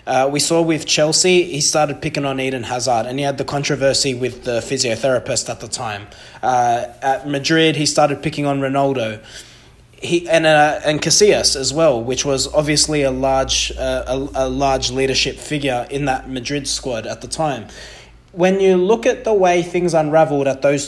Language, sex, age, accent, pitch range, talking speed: English, male, 20-39, Australian, 130-160 Hz, 185 wpm